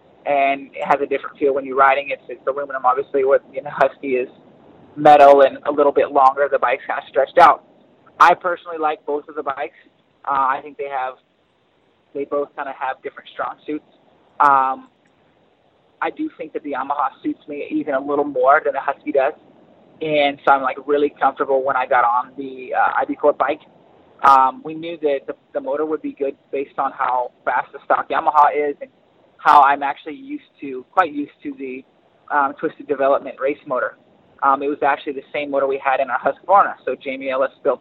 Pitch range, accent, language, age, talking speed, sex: 135-155 Hz, American, English, 20-39, 210 wpm, male